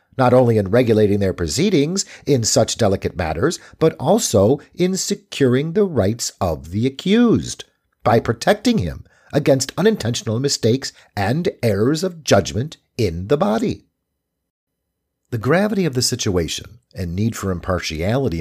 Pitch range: 100-150 Hz